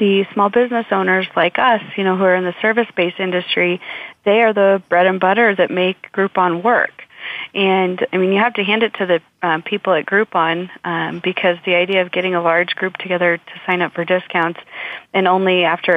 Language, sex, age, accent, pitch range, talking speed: English, female, 30-49, American, 180-210 Hz, 210 wpm